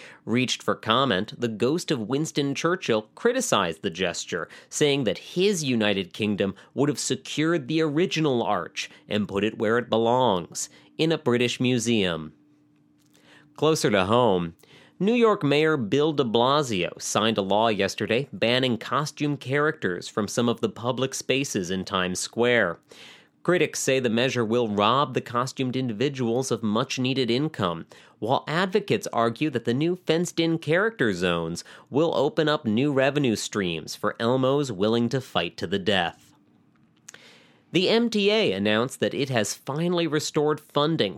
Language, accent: English, American